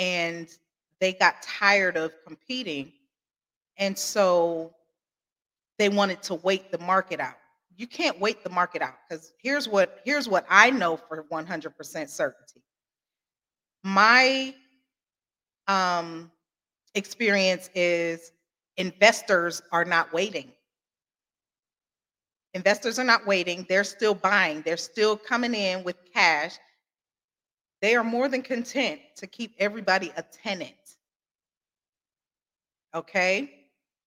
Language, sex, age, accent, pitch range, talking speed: English, female, 40-59, American, 180-240 Hz, 110 wpm